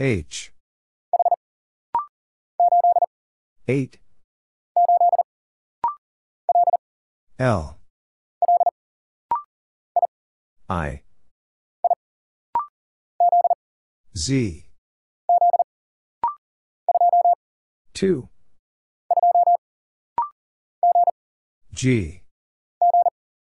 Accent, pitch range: American, 235-350 Hz